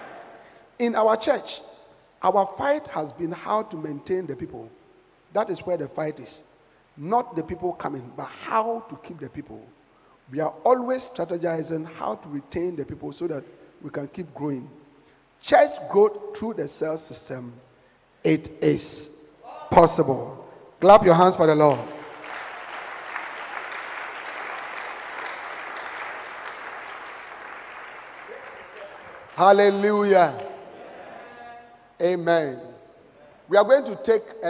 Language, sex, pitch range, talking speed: English, male, 155-195 Hz, 115 wpm